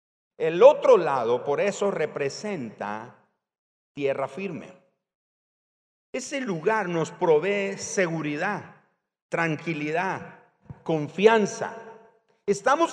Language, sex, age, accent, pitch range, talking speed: Spanish, male, 50-69, Mexican, 150-205 Hz, 75 wpm